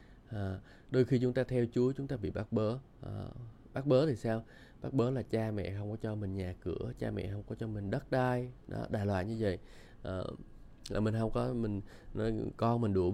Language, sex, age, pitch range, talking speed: Vietnamese, male, 20-39, 100-125 Hz, 230 wpm